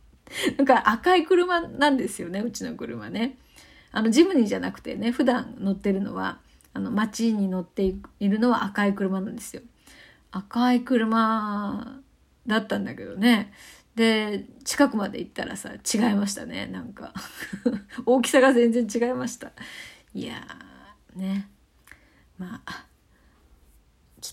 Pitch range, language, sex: 205-260 Hz, Japanese, female